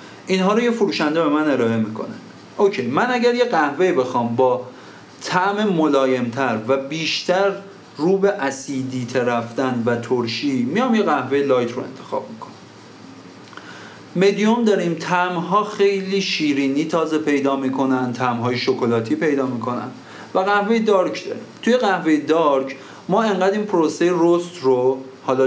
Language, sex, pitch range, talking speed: Persian, male, 130-195 Hz, 145 wpm